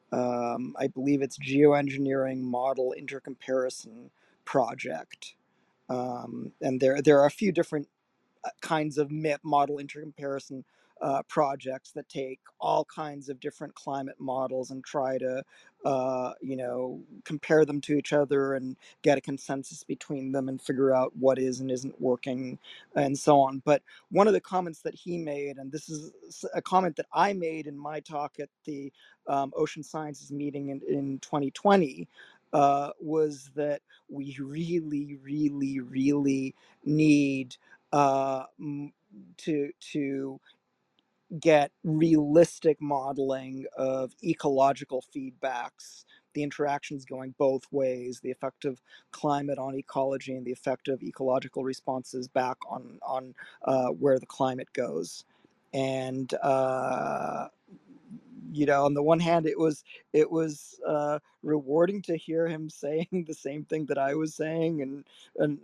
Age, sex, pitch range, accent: 40-59, male, 135-155 Hz, American